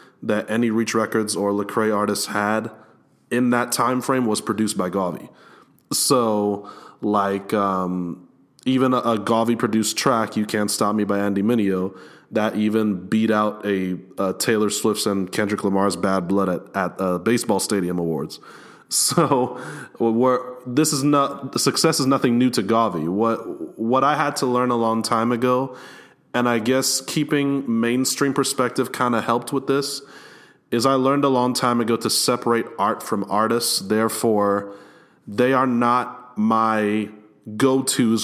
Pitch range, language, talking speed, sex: 105-125 Hz, English, 160 wpm, male